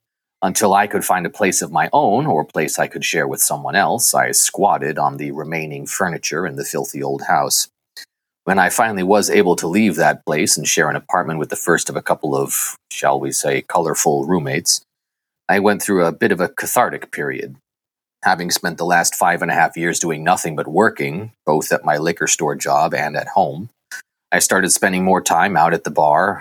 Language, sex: English, male